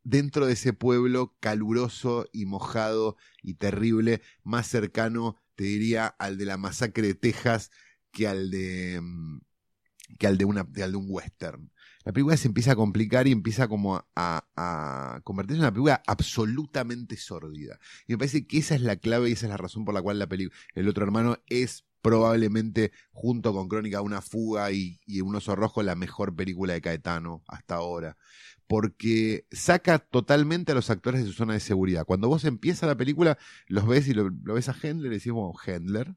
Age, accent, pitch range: 30-49, Argentinian, 95-125 Hz